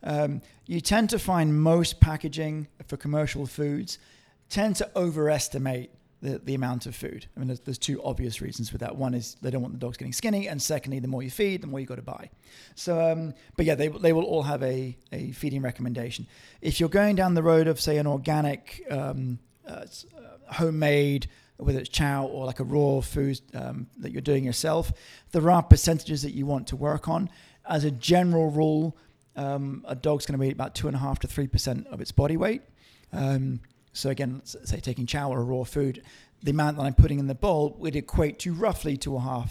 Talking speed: 215 wpm